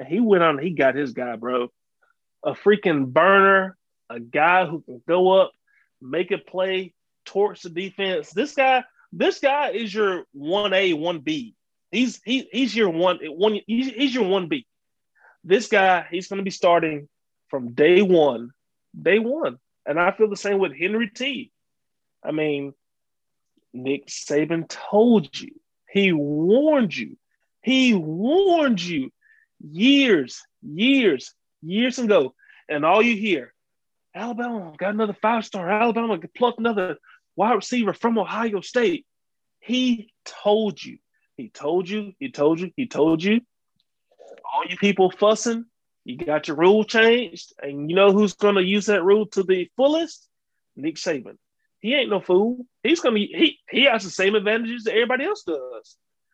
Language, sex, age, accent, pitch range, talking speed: English, male, 30-49, American, 180-245 Hz, 160 wpm